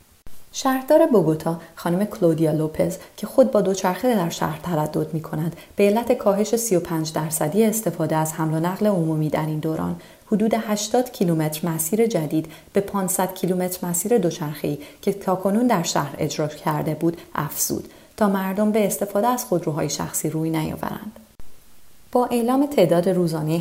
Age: 30-49